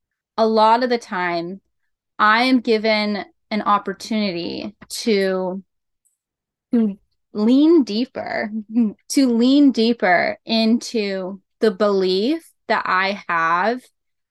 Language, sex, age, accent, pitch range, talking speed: English, female, 10-29, American, 195-240 Hz, 90 wpm